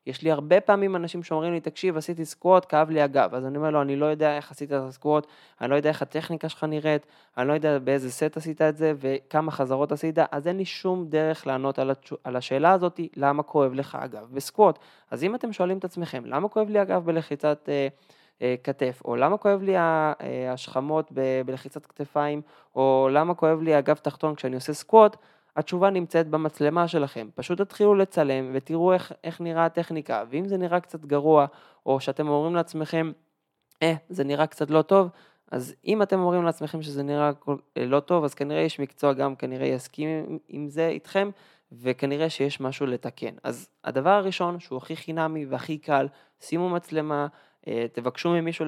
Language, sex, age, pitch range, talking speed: Hebrew, male, 20-39, 140-165 Hz, 185 wpm